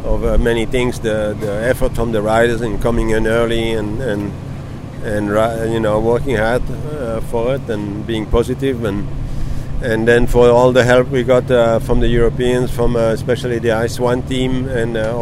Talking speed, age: 195 wpm, 50-69